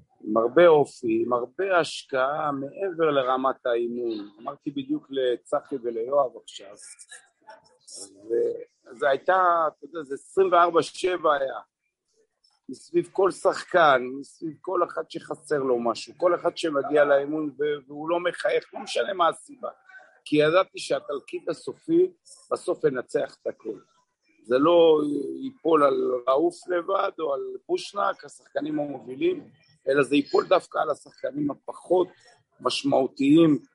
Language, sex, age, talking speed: Hebrew, male, 50-69, 120 wpm